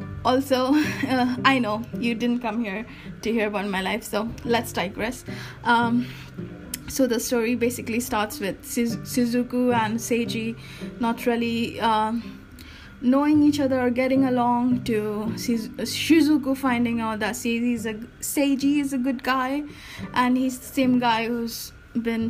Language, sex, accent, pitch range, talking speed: English, female, Indian, 230-260 Hz, 145 wpm